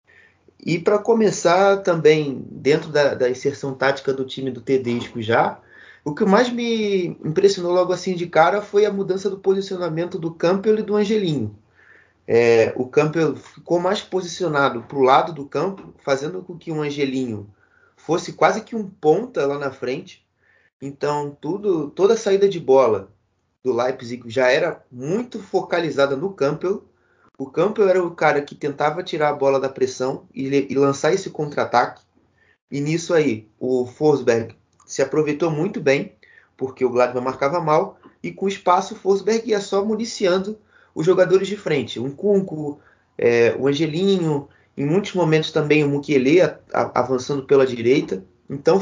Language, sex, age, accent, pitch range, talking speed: Portuguese, male, 20-39, Brazilian, 135-190 Hz, 155 wpm